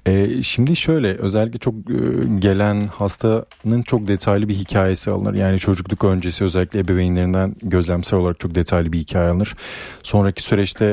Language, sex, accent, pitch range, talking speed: Turkish, male, native, 90-105 Hz, 135 wpm